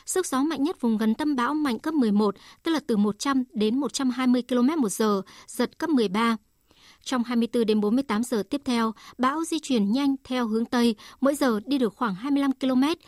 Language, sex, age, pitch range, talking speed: Vietnamese, male, 60-79, 220-275 Hz, 195 wpm